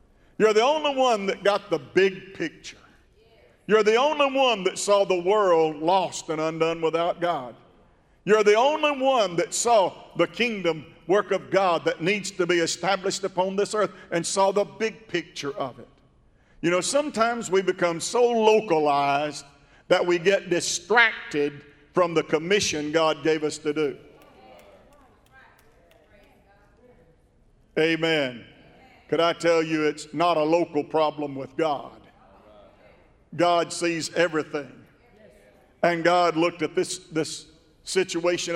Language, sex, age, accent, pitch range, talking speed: English, male, 50-69, American, 155-190 Hz, 140 wpm